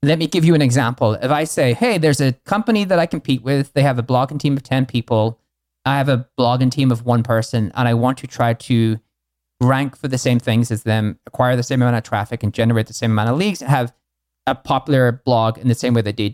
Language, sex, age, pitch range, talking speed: English, male, 30-49, 125-155 Hz, 250 wpm